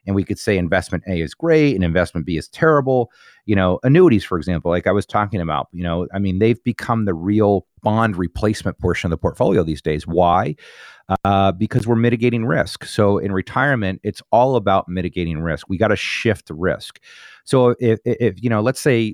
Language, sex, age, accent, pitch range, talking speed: English, male, 30-49, American, 85-105 Hz, 205 wpm